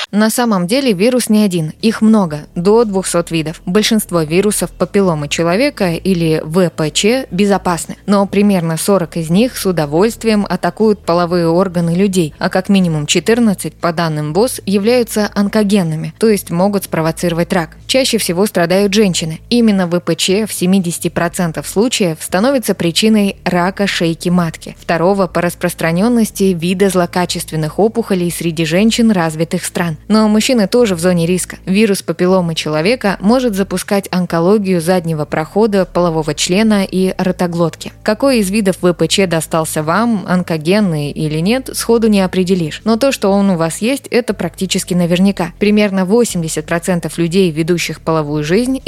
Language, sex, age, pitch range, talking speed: Russian, female, 20-39, 170-205 Hz, 140 wpm